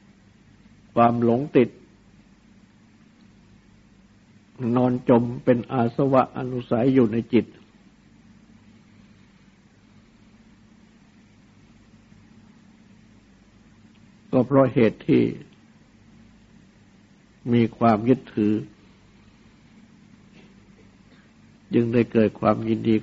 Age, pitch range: 60-79, 110-125 Hz